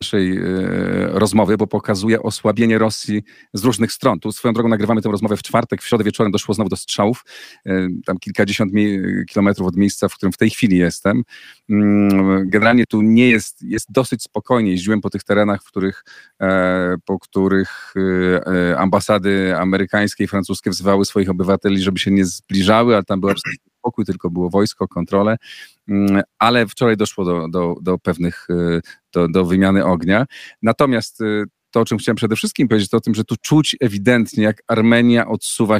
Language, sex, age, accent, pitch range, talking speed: Polish, male, 40-59, native, 95-110 Hz, 165 wpm